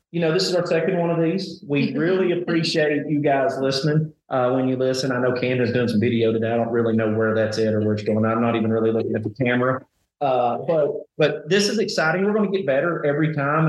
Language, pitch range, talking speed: English, 130-150 Hz, 260 wpm